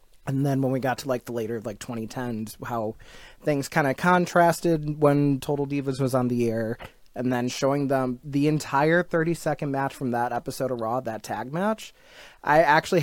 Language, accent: English, American